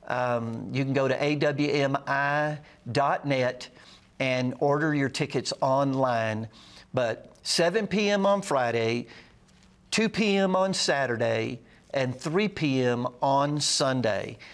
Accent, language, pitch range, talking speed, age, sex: American, English, 125-160 Hz, 105 wpm, 50-69, male